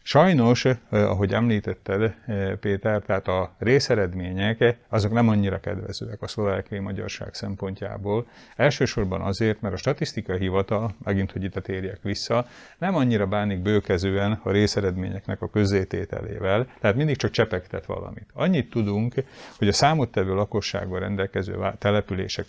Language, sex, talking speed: Hungarian, male, 130 wpm